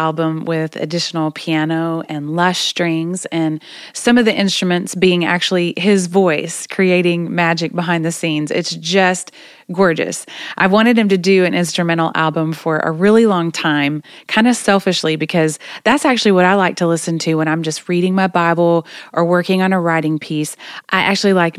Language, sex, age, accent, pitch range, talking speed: English, female, 30-49, American, 160-200 Hz, 180 wpm